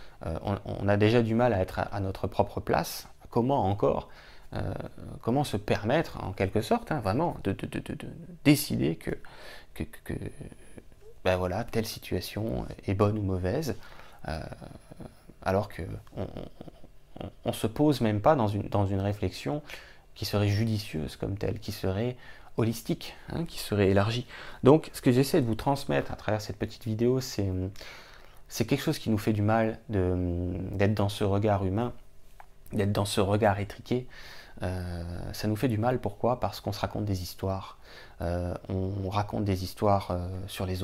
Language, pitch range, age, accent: French, 95-115 Hz, 20-39, French